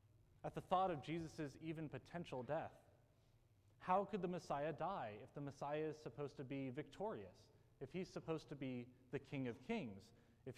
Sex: male